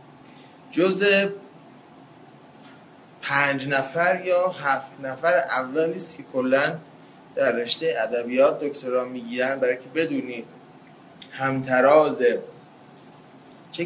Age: 20-39